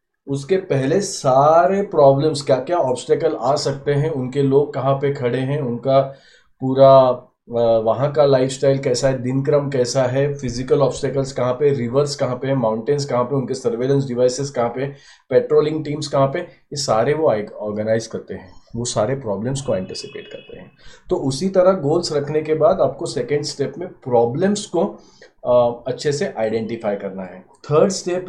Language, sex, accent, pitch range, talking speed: English, male, Indian, 120-145 Hz, 140 wpm